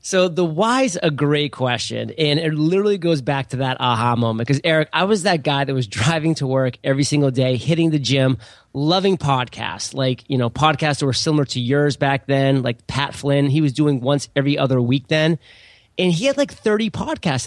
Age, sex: 30-49, male